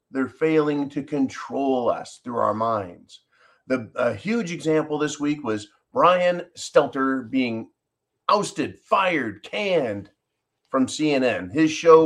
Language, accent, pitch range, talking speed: English, American, 130-165 Hz, 125 wpm